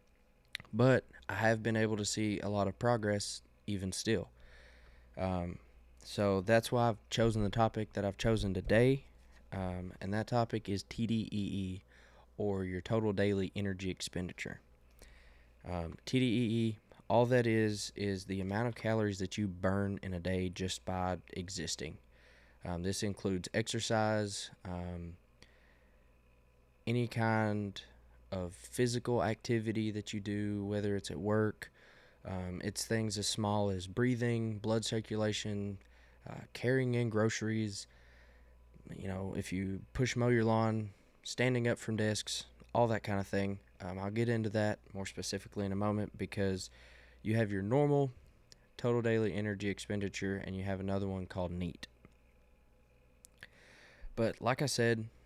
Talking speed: 145 wpm